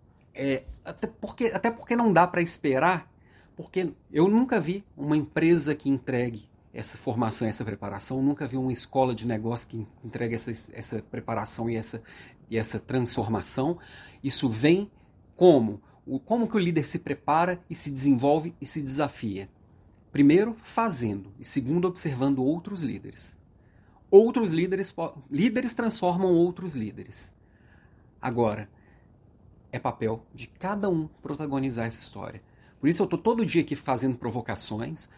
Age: 30-49